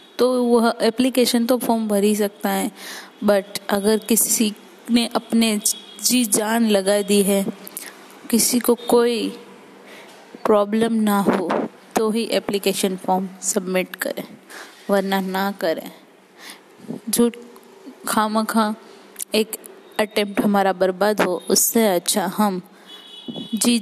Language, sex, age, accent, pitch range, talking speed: Hindi, female, 20-39, native, 200-230 Hz, 115 wpm